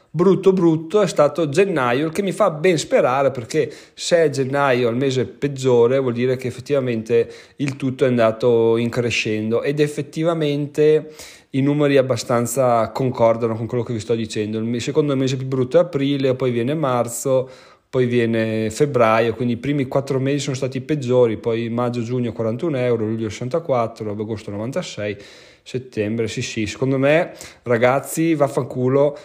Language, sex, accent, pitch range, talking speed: Italian, male, native, 120-150 Hz, 150 wpm